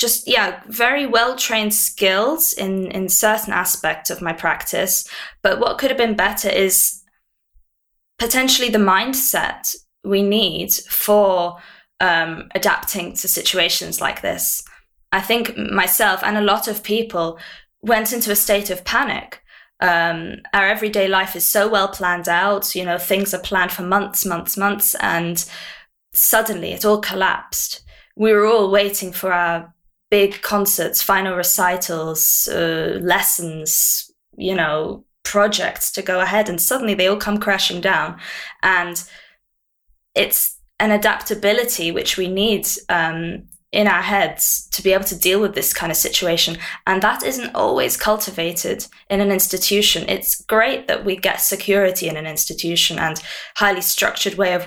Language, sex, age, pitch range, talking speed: English, female, 20-39, 175-210 Hz, 150 wpm